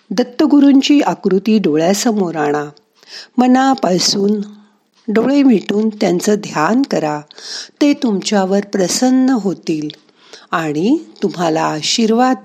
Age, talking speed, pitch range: 50-69, 65 wpm, 175-240 Hz